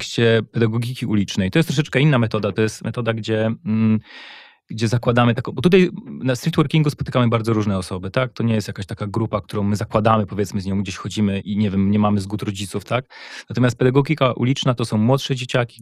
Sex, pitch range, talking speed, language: male, 105-130 Hz, 205 wpm, Polish